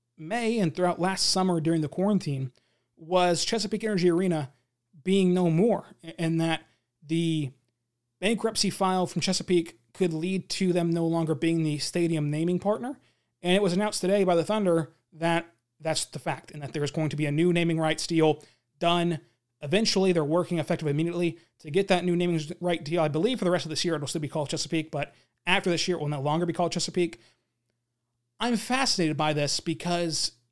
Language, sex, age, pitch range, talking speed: English, male, 30-49, 150-180 Hz, 200 wpm